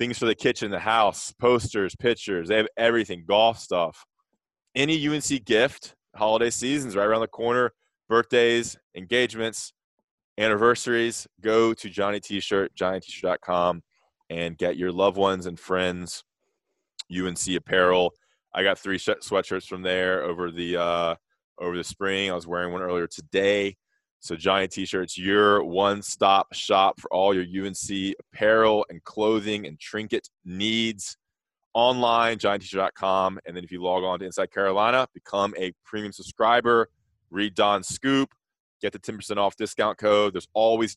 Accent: American